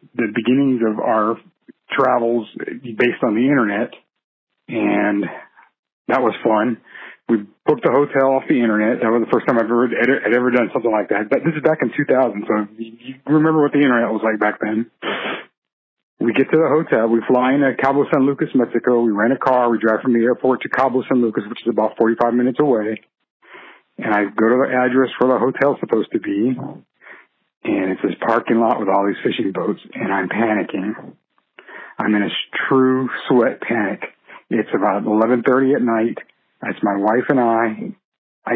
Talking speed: 190 wpm